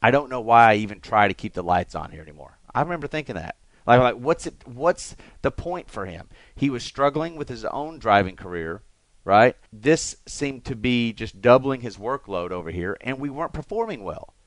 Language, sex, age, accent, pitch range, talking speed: English, male, 40-59, American, 100-140 Hz, 210 wpm